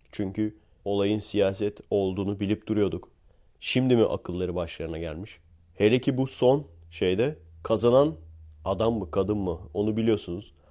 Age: 30-49